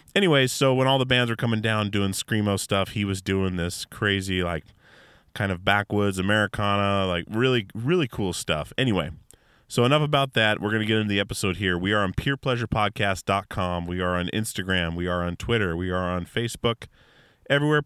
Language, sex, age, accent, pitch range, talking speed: English, male, 30-49, American, 90-115 Hz, 190 wpm